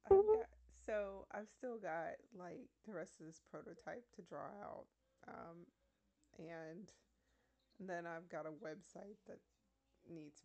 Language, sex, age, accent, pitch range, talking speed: English, female, 20-39, American, 160-210 Hz, 140 wpm